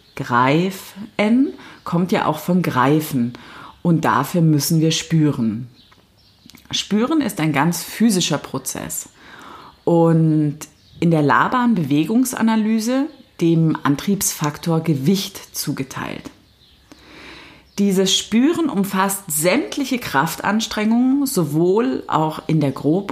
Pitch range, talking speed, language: 150-210 Hz, 90 wpm, German